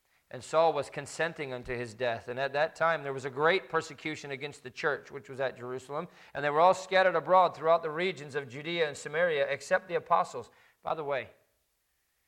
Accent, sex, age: American, male, 40-59